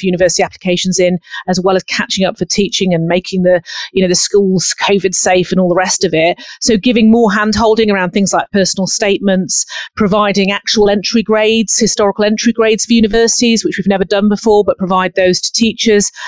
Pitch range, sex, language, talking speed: 195-235 Hz, female, English, 195 wpm